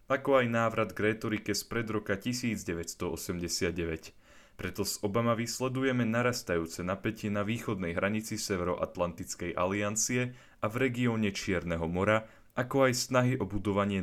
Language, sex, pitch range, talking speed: Slovak, male, 90-115 Hz, 130 wpm